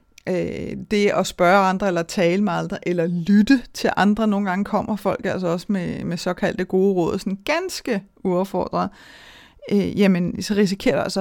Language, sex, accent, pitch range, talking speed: Danish, female, native, 185-230 Hz, 175 wpm